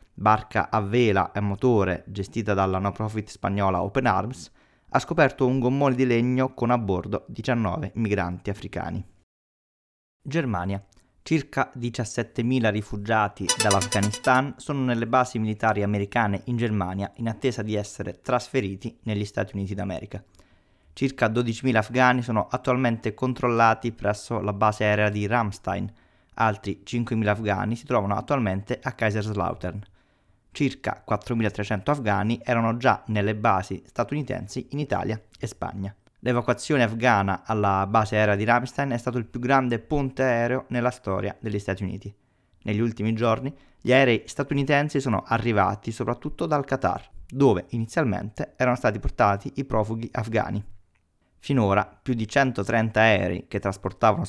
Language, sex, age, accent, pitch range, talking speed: Italian, male, 20-39, native, 100-125 Hz, 135 wpm